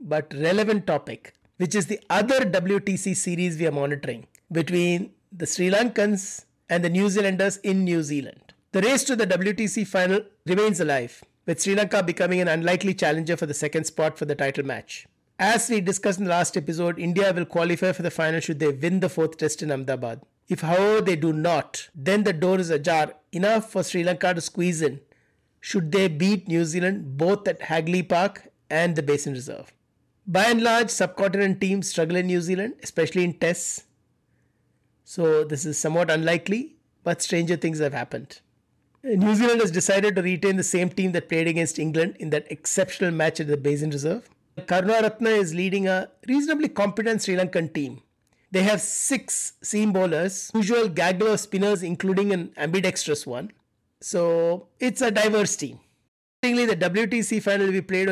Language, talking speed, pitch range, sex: English, 180 wpm, 160-200 Hz, male